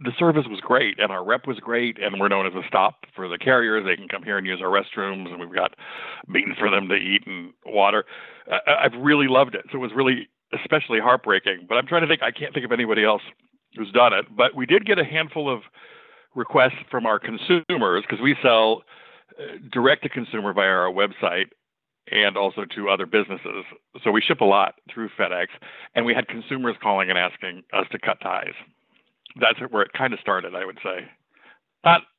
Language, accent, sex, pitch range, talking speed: English, American, male, 100-135 Hz, 215 wpm